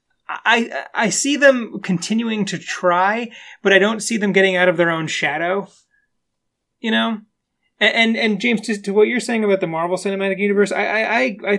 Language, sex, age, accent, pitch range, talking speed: English, male, 30-49, American, 170-210 Hz, 185 wpm